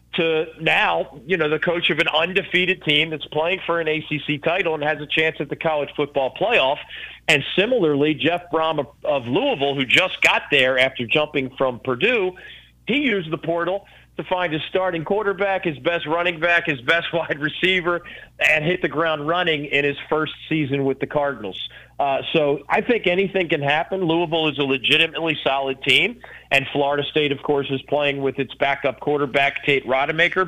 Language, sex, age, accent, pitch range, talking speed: English, male, 40-59, American, 140-175 Hz, 185 wpm